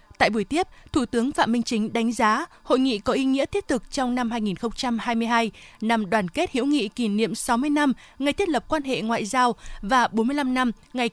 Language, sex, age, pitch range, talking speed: Vietnamese, female, 20-39, 225-280 Hz, 215 wpm